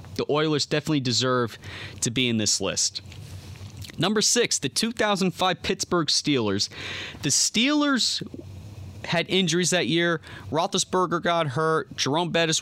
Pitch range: 115-165 Hz